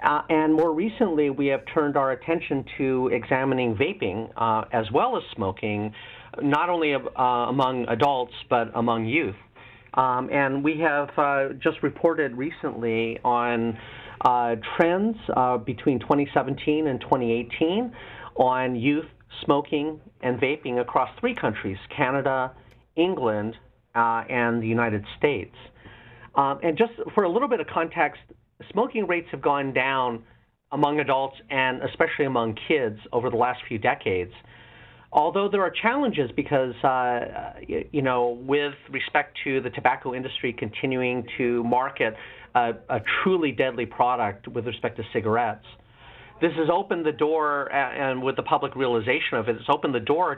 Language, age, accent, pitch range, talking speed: English, 40-59, American, 120-150 Hz, 145 wpm